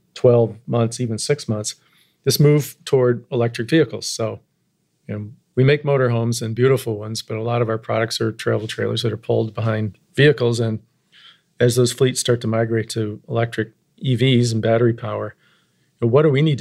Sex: male